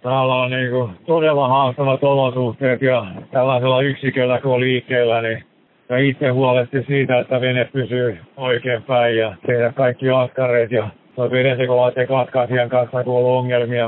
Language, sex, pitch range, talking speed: Finnish, male, 115-125 Hz, 140 wpm